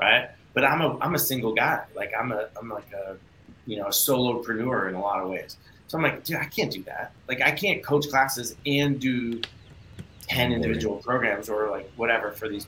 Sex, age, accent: male, 30-49, American